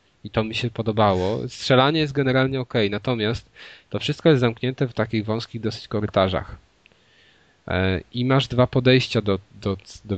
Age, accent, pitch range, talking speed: 20-39, native, 95-115 Hz, 145 wpm